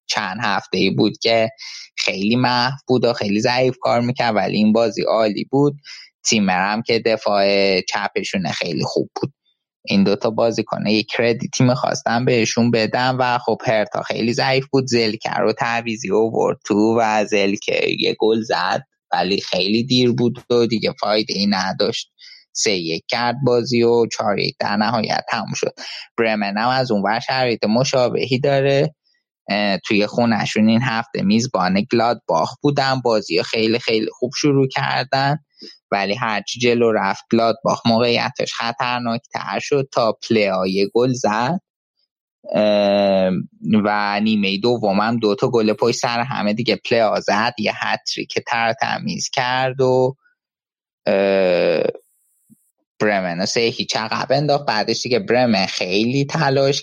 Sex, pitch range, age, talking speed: male, 110-130 Hz, 20-39, 140 wpm